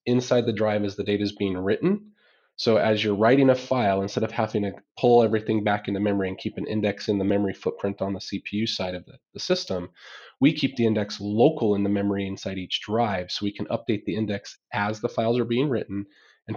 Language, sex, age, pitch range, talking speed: English, male, 30-49, 100-120 Hz, 230 wpm